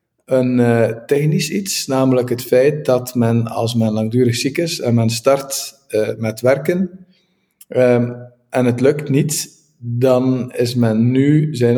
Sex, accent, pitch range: male, Dutch, 115-145 Hz